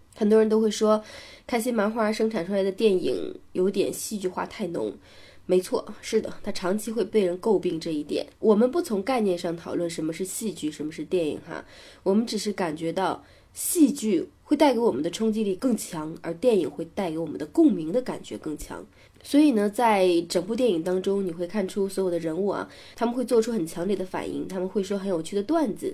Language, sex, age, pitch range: Chinese, female, 20-39, 180-250 Hz